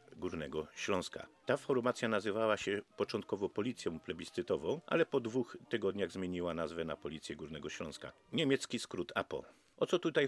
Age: 50-69